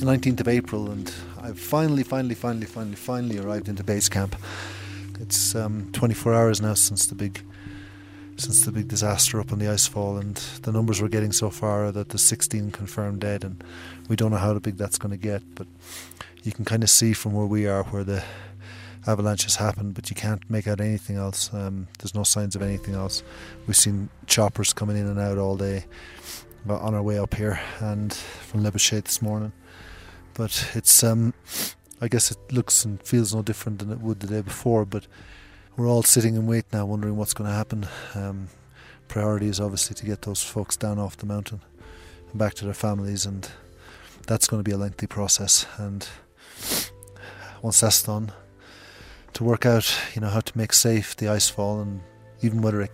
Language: English